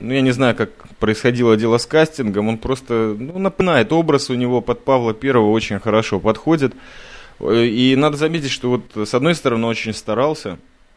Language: Russian